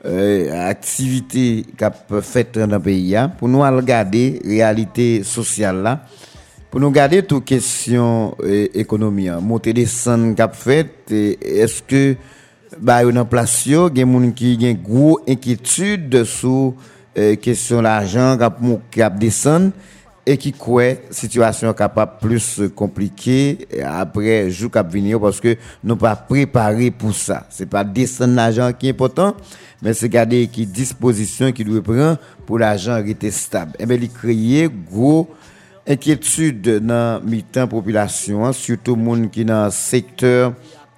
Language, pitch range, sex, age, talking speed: French, 110-130 Hz, male, 50-69, 150 wpm